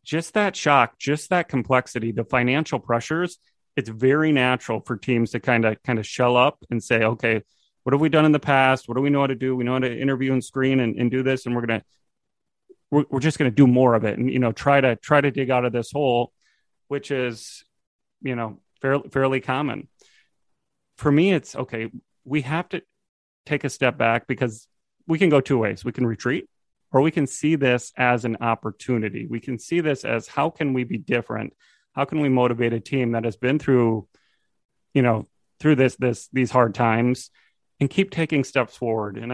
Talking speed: 215 wpm